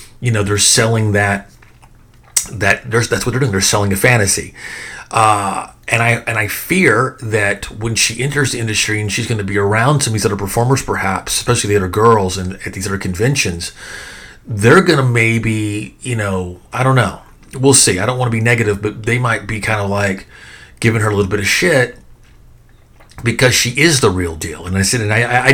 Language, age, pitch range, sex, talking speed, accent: English, 40-59, 100-120 Hz, male, 215 wpm, American